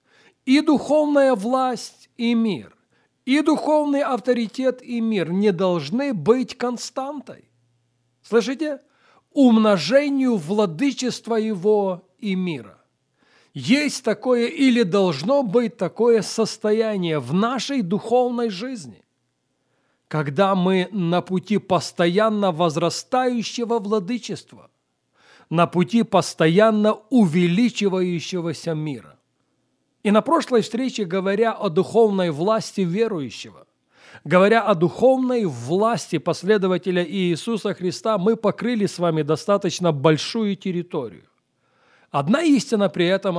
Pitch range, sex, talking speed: 175-235 Hz, male, 95 wpm